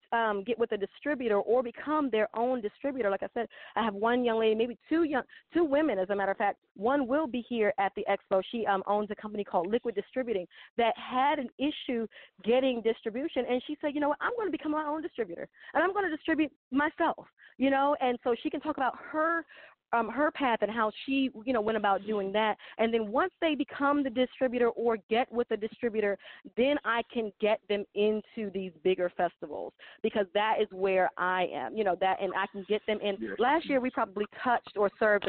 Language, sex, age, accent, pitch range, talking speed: English, female, 30-49, American, 200-270 Hz, 225 wpm